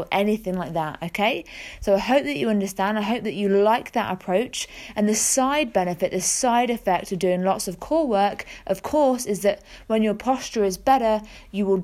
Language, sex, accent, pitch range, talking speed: English, female, British, 180-215 Hz, 210 wpm